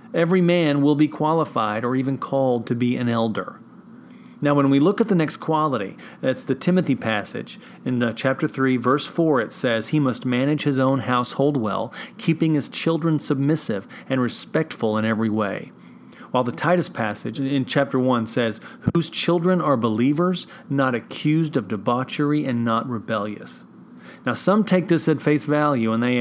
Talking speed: 175 wpm